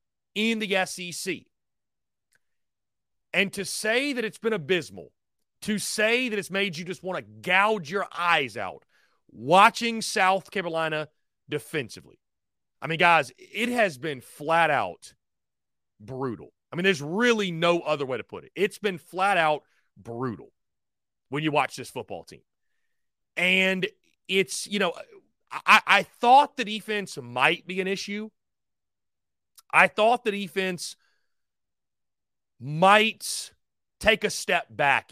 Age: 30-49